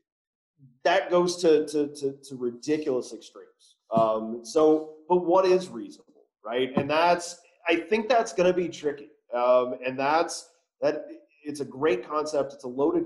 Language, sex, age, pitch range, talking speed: English, male, 30-49, 125-175 Hz, 160 wpm